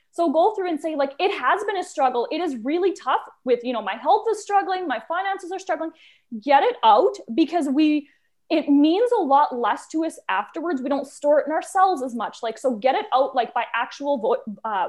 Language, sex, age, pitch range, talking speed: English, female, 20-39, 250-335 Hz, 225 wpm